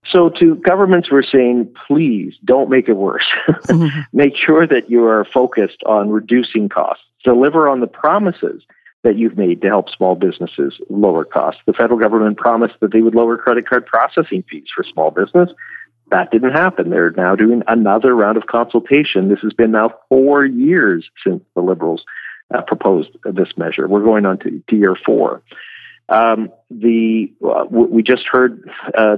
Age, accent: 50-69, American